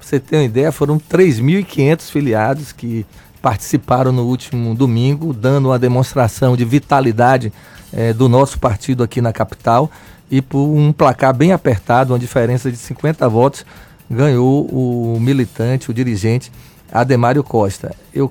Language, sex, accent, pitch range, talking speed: Portuguese, male, Brazilian, 115-140 Hz, 145 wpm